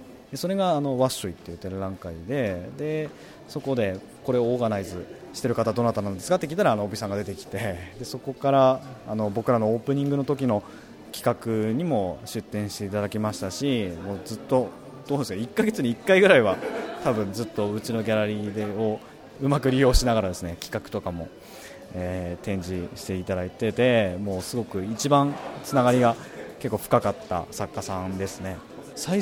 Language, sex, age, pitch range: Japanese, male, 20-39, 100-130 Hz